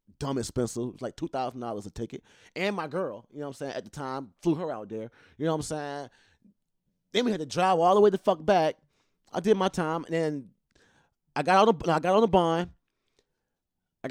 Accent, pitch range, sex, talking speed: American, 110-165 Hz, male, 215 wpm